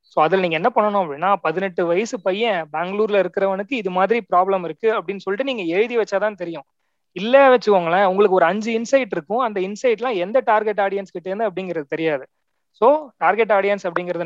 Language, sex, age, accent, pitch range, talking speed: Tamil, male, 30-49, native, 170-220 Hz, 165 wpm